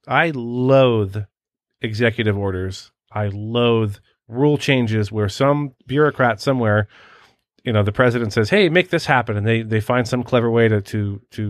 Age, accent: 30-49, American